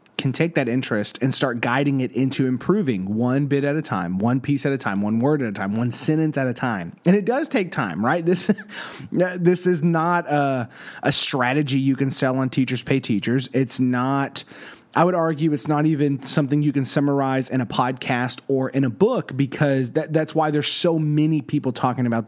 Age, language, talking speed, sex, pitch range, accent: 30-49, English, 210 wpm, male, 130-165 Hz, American